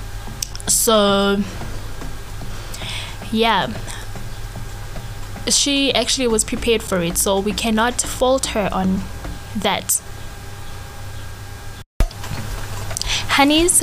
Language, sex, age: English, female, 10-29